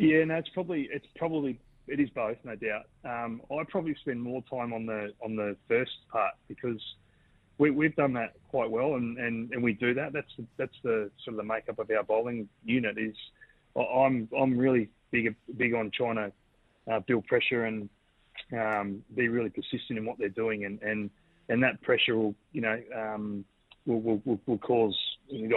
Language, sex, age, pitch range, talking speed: English, male, 30-49, 105-120 Hz, 195 wpm